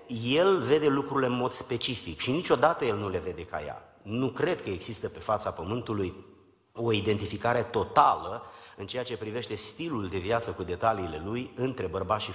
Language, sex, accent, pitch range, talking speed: Romanian, male, native, 100-140 Hz, 180 wpm